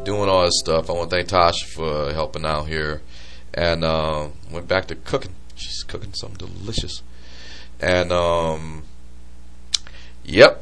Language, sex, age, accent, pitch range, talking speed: English, male, 30-49, American, 75-105 Hz, 145 wpm